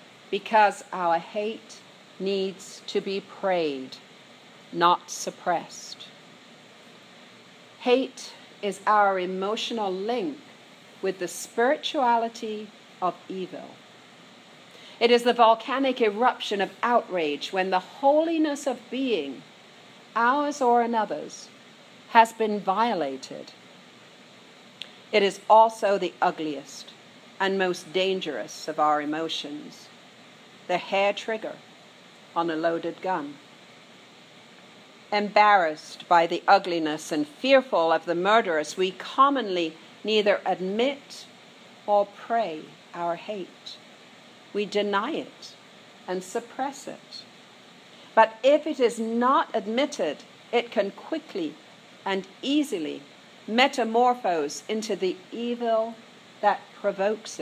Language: English